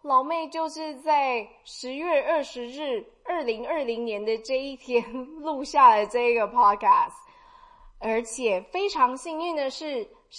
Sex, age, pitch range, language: female, 20-39, 230-355 Hz, Chinese